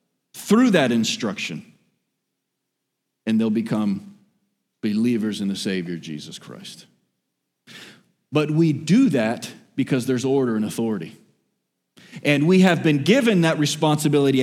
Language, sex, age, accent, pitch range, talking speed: English, male, 40-59, American, 120-200 Hz, 115 wpm